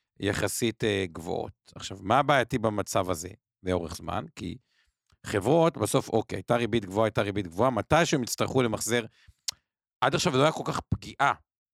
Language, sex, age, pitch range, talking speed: Hebrew, male, 50-69, 105-135 Hz, 160 wpm